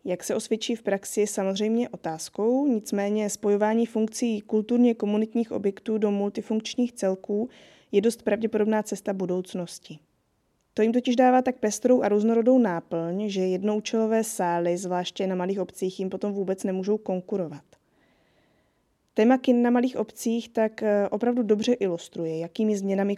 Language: Czech